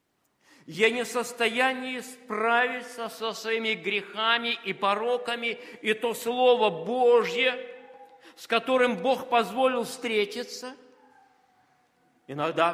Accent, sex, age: native, male, 50-69